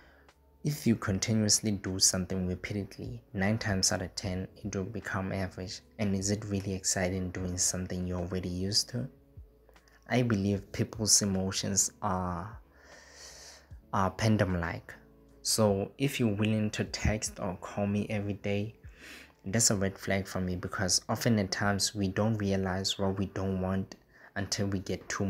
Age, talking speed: 20-39, 155 wpm